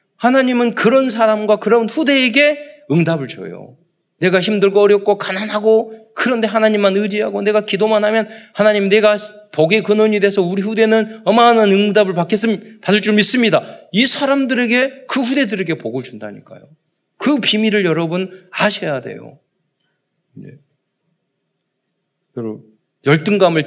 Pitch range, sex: 175-225 Hz, male